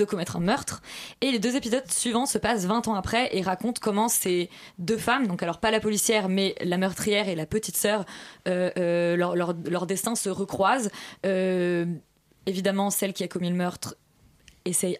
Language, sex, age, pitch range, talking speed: French, female, 20-39, 180-220 Hz, 195 wpm